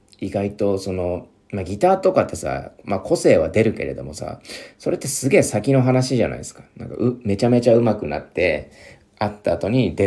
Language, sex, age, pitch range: Japanese, male, 40-59, 90-120 Hz